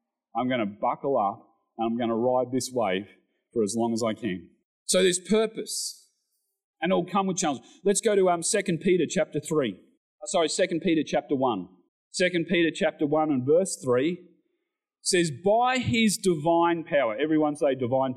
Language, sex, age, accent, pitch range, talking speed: English, male, 40-59, Australian, 145-215 Hz, 180 wpm